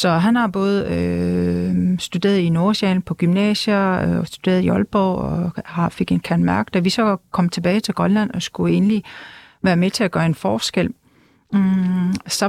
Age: 40-59